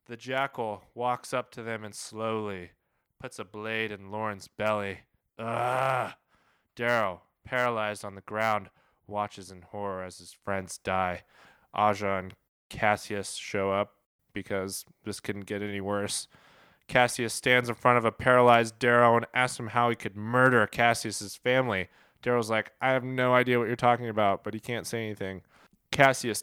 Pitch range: 95-120 Hz